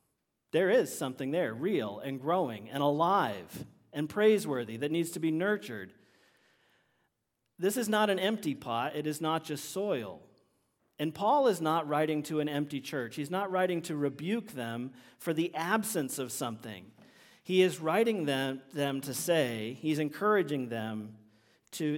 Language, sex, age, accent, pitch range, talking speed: English, male, 40-59, American, 130-165 Hz, 160 wpm